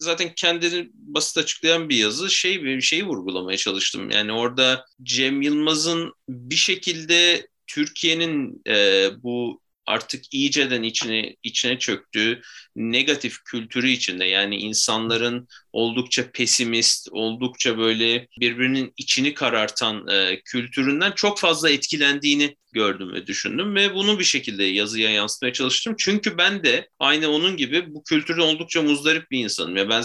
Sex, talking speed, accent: male, 135 wpm, native